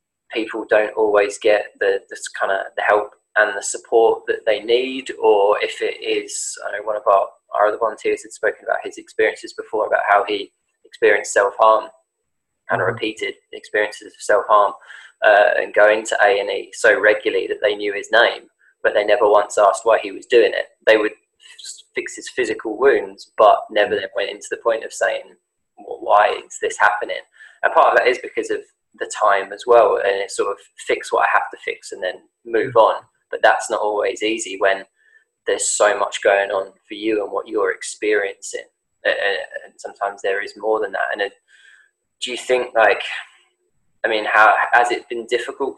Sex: male